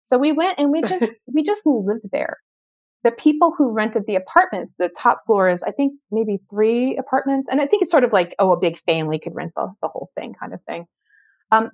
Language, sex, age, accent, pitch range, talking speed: English, female, 30-49, American, 170-235 Hz, 235 wpm